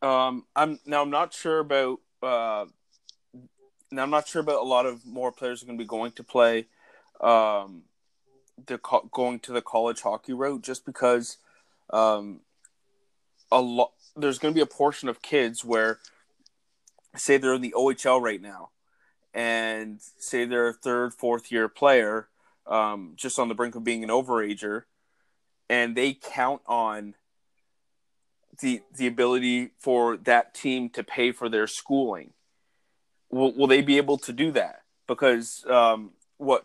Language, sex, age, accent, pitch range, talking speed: English, male, 20-39, American, 115-135 Hz, 160 wpm